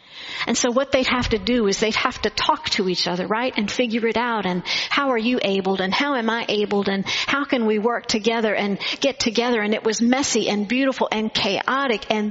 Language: English